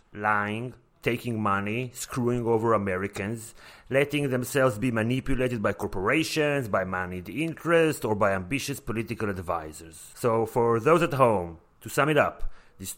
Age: 30-49